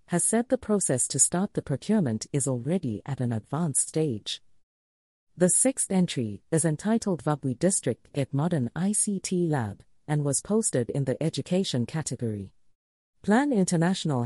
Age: 40-59